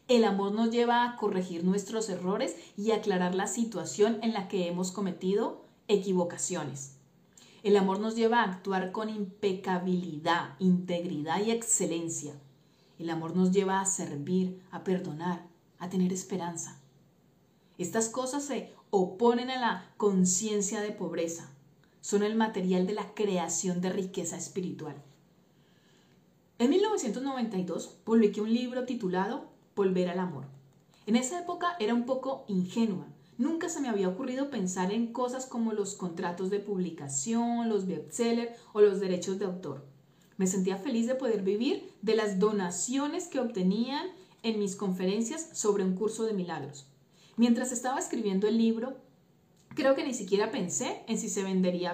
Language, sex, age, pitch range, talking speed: Spanish, female, 40-59, 180-230 Hz, 145 wpm